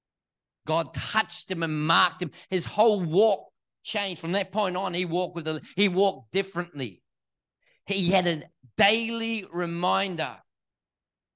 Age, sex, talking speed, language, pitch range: 40-59, male, 135 wpm, English, 140-185 Hz